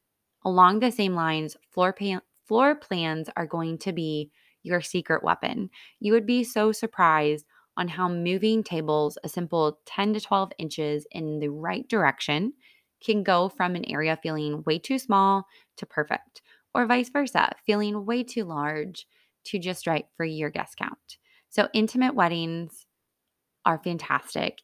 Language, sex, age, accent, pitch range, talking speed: English, female, 20-39, American, 160-215 Hz, 155 wpm